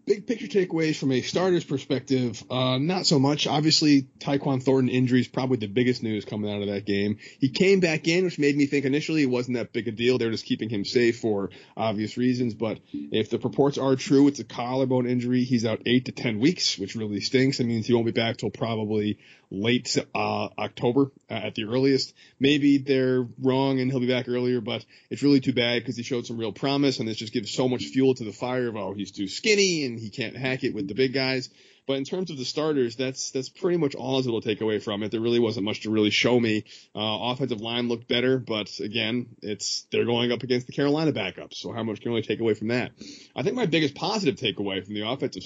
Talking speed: 245 wpm